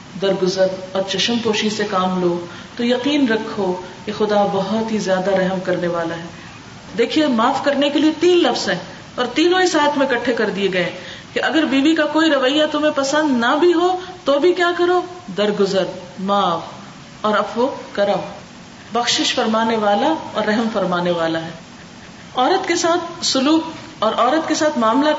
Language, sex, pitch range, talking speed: Urdu, female, 195-295 Hz, 170 wpm